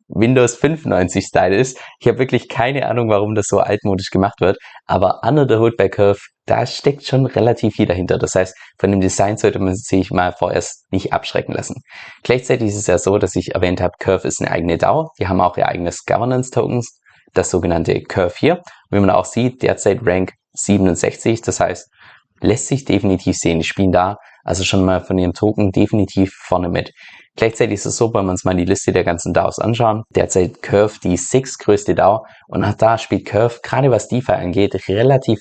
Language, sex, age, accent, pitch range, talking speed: German, male, 20-39, German, 95-115 Hz, 200 wpm